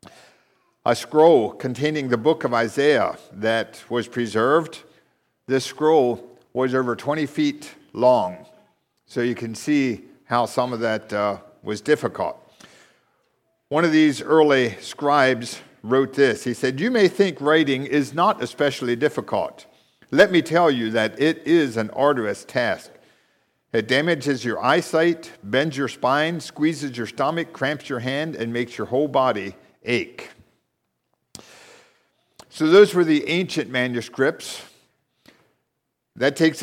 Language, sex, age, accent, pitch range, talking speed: English, male, 50-69, American, 120-155 Hz, 135 wpm